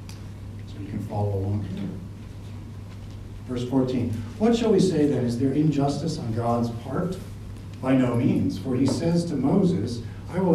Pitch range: 100-145 Hz